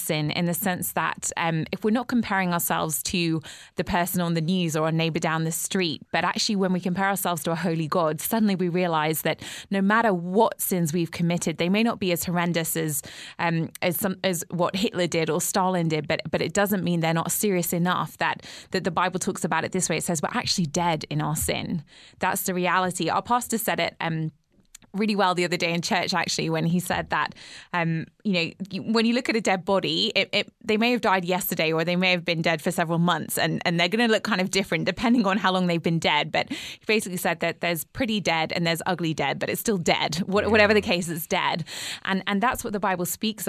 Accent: British